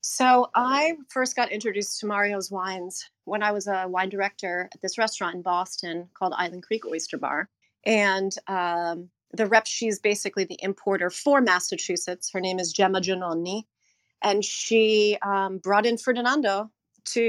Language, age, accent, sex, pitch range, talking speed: English, 30-49, American, female, 180-220 Hz, 160 wpm